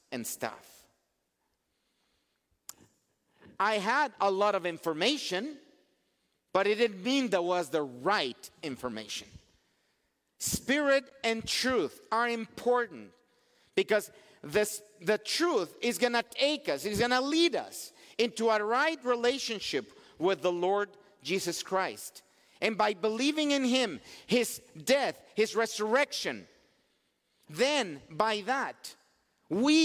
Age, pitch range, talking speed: 50-69, 180-245 Hz, 115 wpm